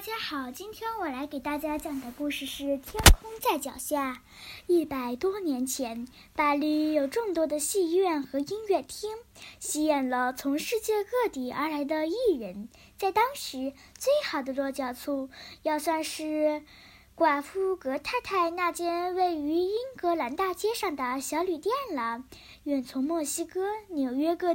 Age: 10-29